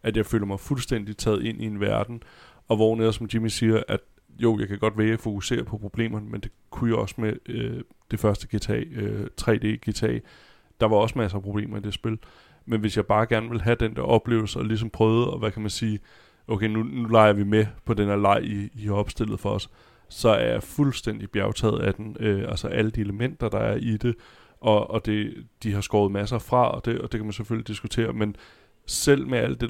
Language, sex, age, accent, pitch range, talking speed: Danish, male, 20-39, native, 105-115 Hz, 235 wpm